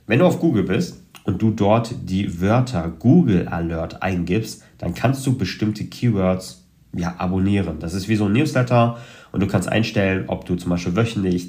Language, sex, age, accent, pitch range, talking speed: German, male, 40-59, German, 90-110 Hz, 180 wpm